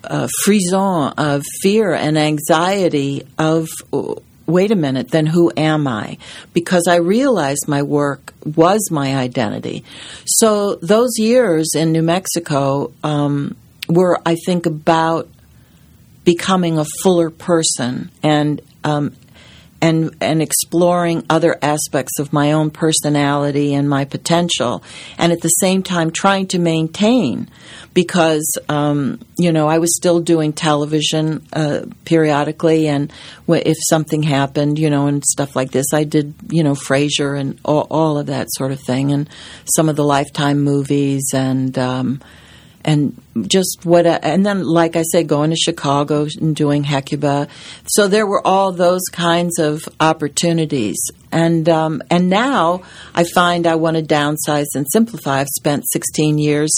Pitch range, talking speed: 145-170 Hz, 150 wpm